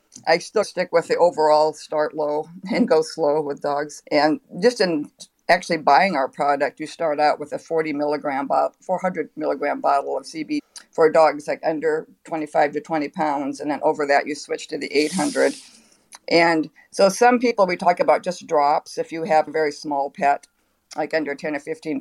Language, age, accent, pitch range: English, 50-69, American, 145-170 Hz